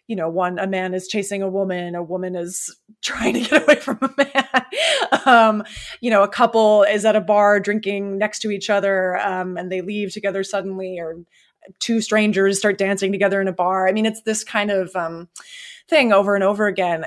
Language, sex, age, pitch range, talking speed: English, female, 20-39, 185-225 Hz, 210 wpm